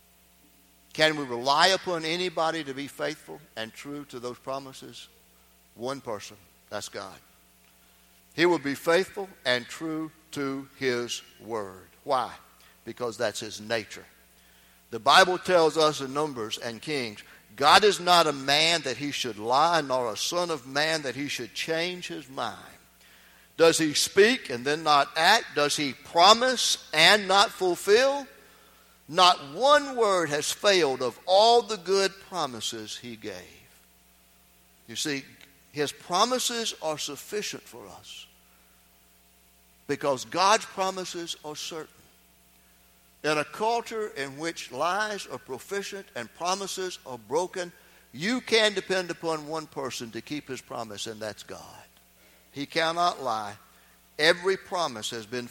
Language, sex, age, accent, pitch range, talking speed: English, male, 60-79, American, 120-180 Hz, 140 wpm